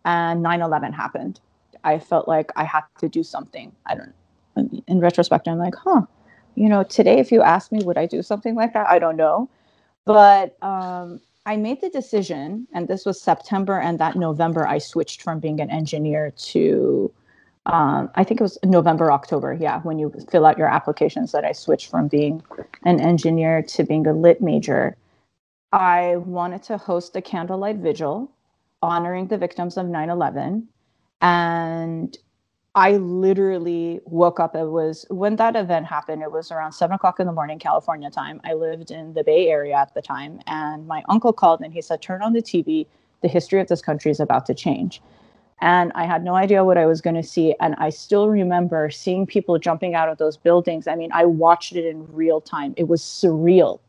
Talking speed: 195 wpm